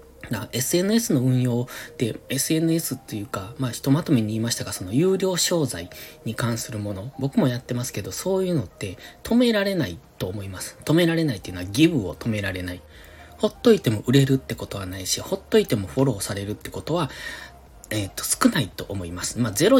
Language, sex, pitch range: Japanese, male, 105-150 Hz